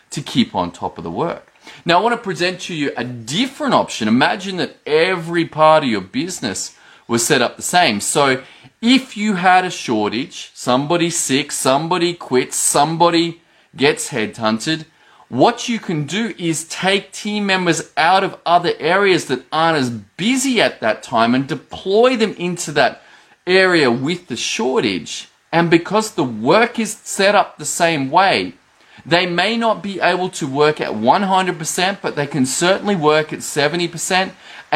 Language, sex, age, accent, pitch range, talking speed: English, male, 30-49, Australian, 135-185 Hz, 165 wpm